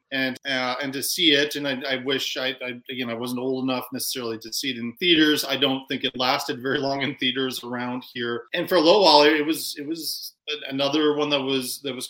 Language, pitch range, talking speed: English, 130-150 Hz, 245 wpm